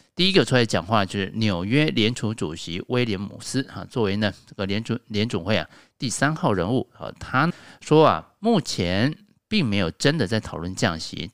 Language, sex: Chinese, male